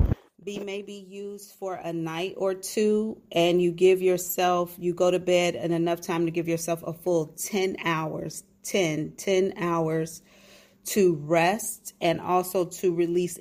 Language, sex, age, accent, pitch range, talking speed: English, female, 30-49, American, 165-195 Hz, 155 wpm